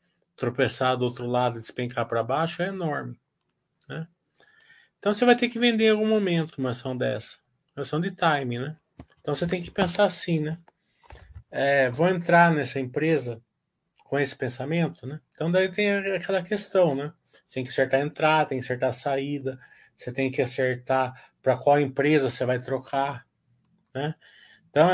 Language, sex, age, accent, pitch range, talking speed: Portuguese, male, 20-39, Brazilian, 125-170 Hz, 175 wpm